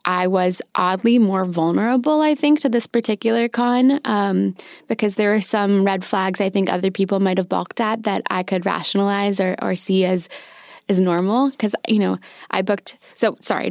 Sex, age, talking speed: female, 10-29, 190 wpm